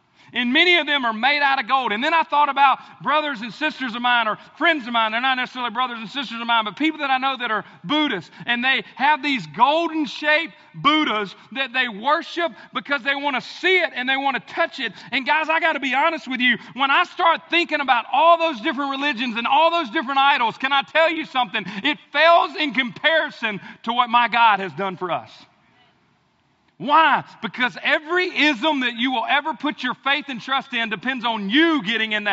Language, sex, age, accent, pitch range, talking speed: English, male, 40-59, American, 195-290 Hz, 220 wpm